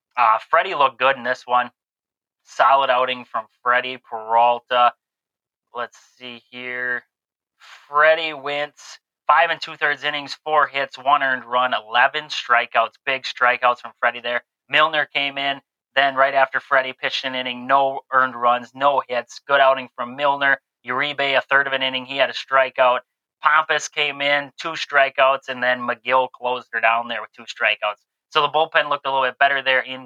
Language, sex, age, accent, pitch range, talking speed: English, male, 20-39, American, 125-140 Hz, 175 wpm